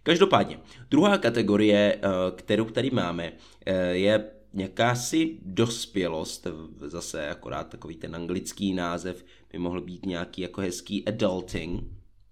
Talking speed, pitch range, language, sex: 105 wpm, 90-110 Hz, Czech, male